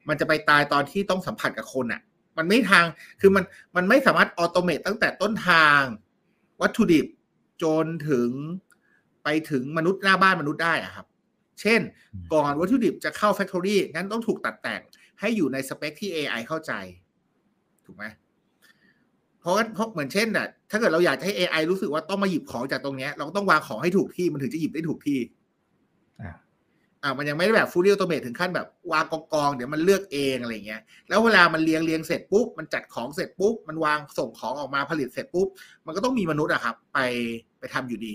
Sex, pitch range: male, 140-195 Hz